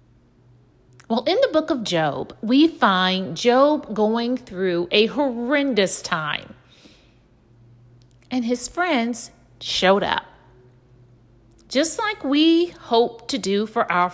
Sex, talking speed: female, 115 wpm